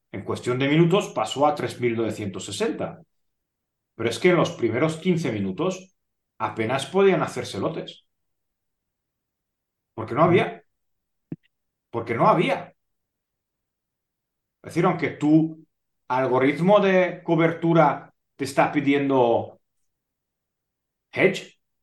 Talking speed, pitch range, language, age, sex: 100 wpm, 120-170 Hz, Spanish, 40-59, male